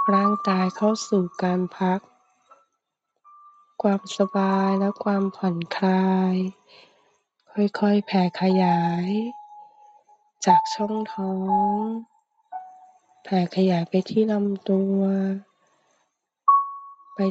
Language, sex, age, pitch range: Thai, female, 20-39, 185-295 Hz